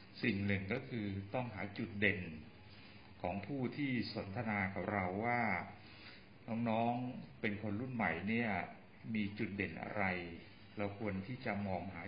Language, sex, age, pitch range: Thai, male, 60-79, 95-110 Hz